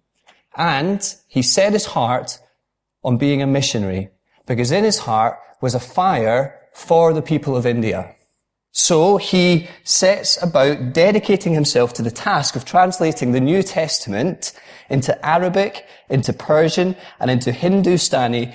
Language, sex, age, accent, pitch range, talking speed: English, male, 30-49, British, 120-175 Hz, 135 wpm